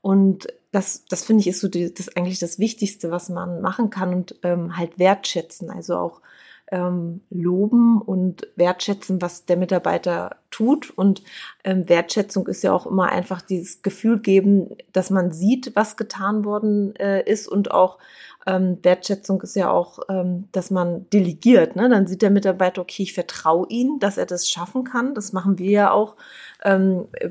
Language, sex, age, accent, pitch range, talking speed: German, female, 20-39, German, 180-205 Hz, 175 wpm